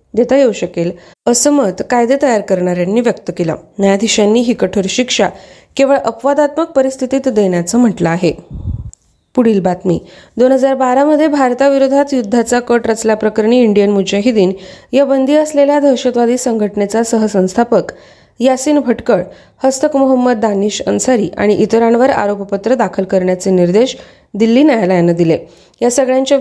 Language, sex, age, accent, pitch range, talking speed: Marathi, female, 30-49, native, 200-265 Hz, 125 wpm